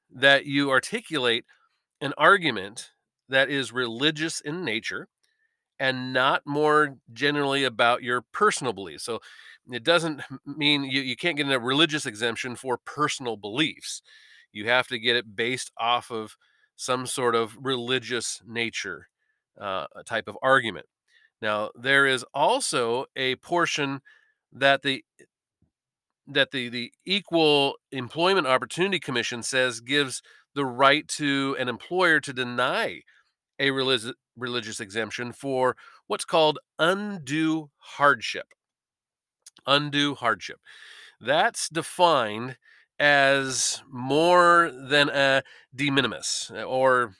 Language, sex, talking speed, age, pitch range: English, male, 115 wpm, 40-59, 120-145 Hz